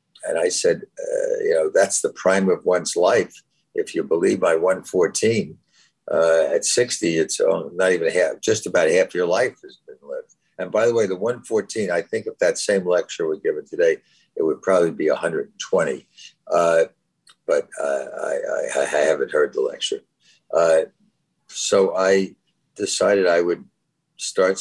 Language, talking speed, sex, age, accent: English, 170 wpm, male, 60-79, American